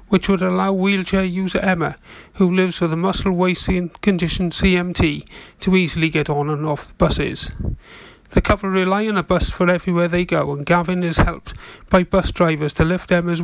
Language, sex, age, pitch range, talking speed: English, male, 40-59, 155-190 Hz, 190 wpm